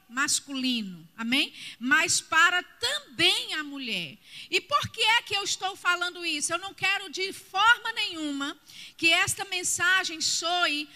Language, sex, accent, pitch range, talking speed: Portuguese, female, Brazilian, 295-375 Hz, 140 wpm